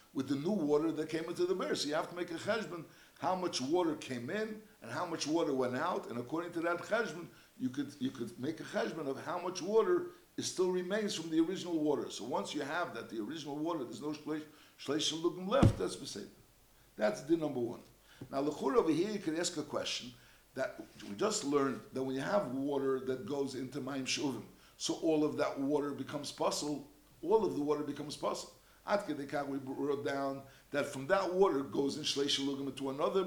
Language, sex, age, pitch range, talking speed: English, male, 60-79, 140-180 Hz, 215 wpm